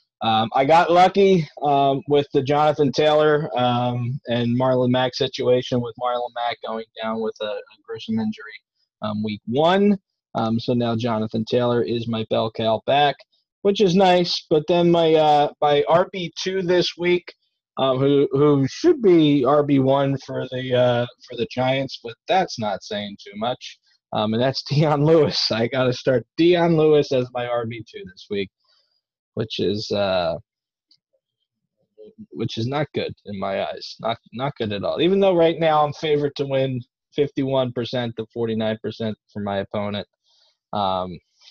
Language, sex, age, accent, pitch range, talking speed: English, male, 20-39, American, 115-150 Hz, 165 wpm